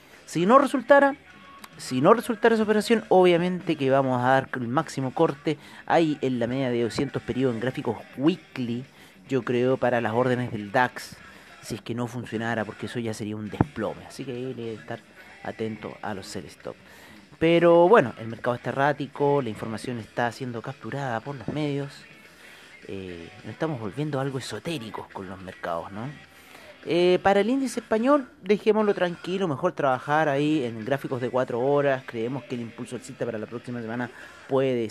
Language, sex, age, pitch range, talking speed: Spanish, male, 30-49, 115-150 Hz, 180 wpm